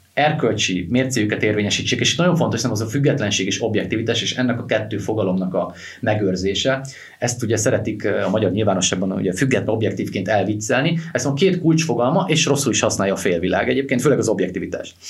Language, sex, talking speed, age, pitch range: Hungarian, male, 170 wpm, 30-49, 95-130 Hz